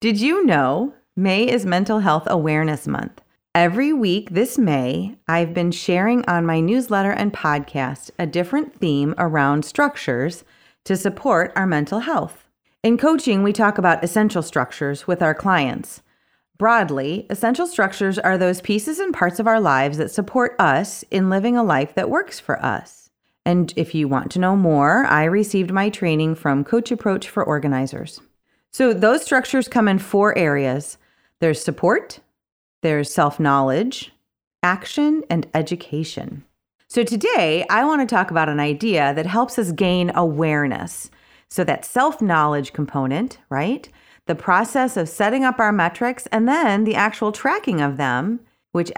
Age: 30-49